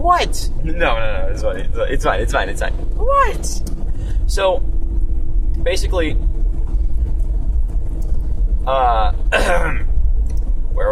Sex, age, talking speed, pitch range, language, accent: male, 20-39, 105 wpm, 115-160 Hz, English, American